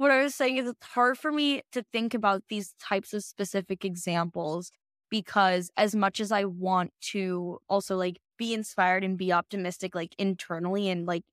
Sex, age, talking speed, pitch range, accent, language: female, 10-29, 185 wpm, 180-205 Hz, American, English